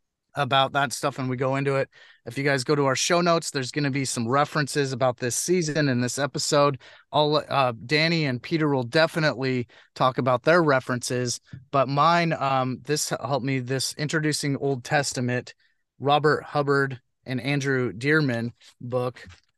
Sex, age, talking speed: male, 30-49, 170 wpm